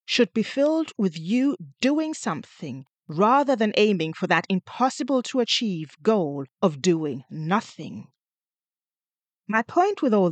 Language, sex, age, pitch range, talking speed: English, female, 40-59, 170-245 Hz, 120 wpm